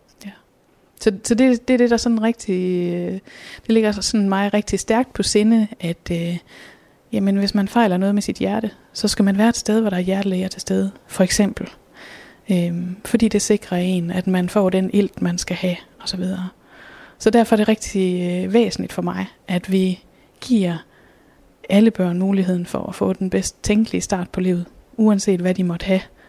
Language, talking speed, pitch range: Danish, 190 wpm, 180-210 Hz